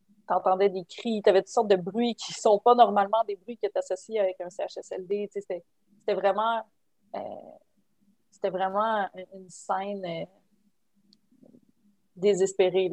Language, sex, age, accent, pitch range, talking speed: French, female, 30-49, Canadian, 180-205 Hz, 160 wpm